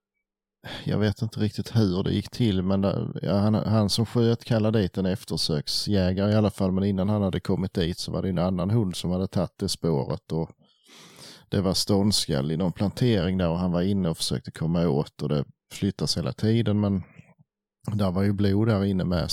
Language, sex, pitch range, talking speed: Swedish, male, 95-120 Hz, 210 wpm